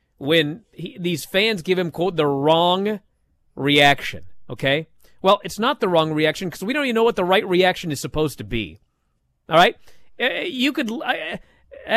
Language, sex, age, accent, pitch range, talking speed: English, male, 40-59, American, 155-240 Hz, 170 wpm